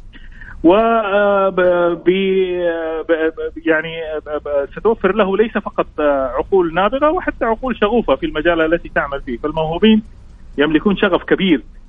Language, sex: Arabic, male